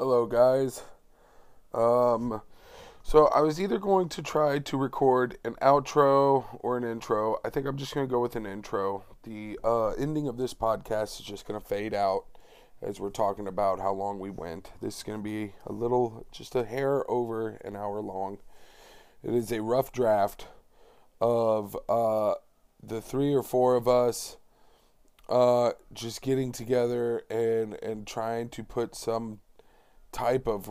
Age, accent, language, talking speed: 20-39, American, English, 170 wpm